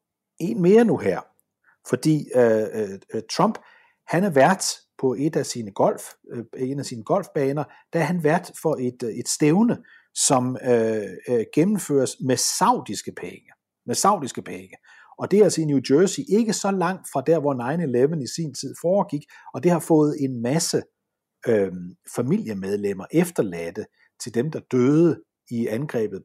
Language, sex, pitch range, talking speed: Danish, male, 120-165 Hz, 165 wpm